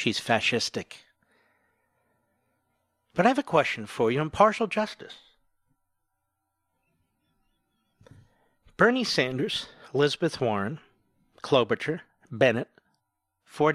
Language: English